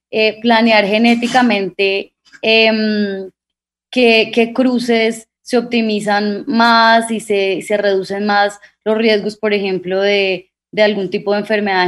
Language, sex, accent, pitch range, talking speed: Spanish, female, Colombian, 210-240 Hz, 120 wpm